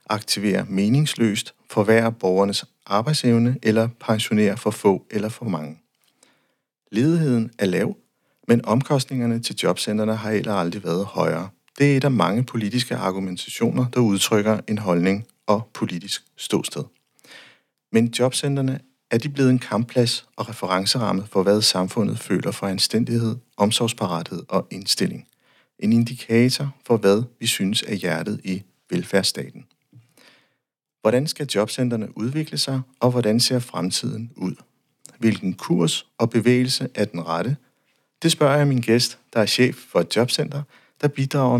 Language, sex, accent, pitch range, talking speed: Danish, male, native, 105-125 Hz, 135 wpm